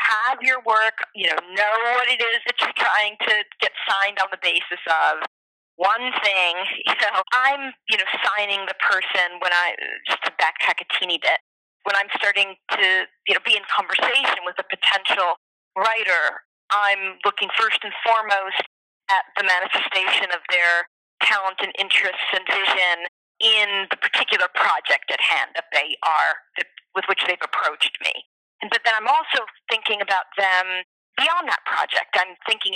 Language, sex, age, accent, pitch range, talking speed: English, female, 40-59, American, 195-250 Hz, 165 wpm